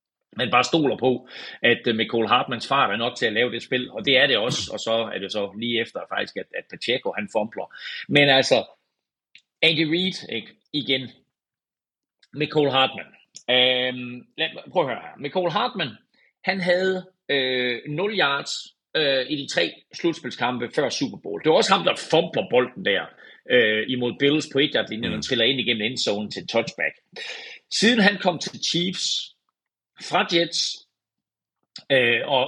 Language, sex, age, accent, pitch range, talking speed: Danish, male, 30-49, native, 130-185 Hz, 155 wpm